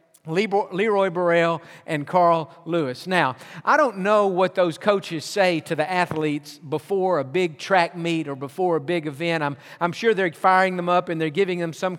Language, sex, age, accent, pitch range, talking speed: English, male, 50-69, American, 160-195 Hz, 190 wpm